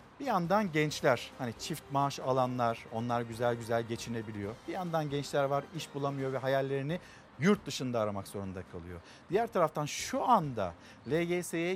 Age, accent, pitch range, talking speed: 50-69, native, 130-170 Hz, 150 wpm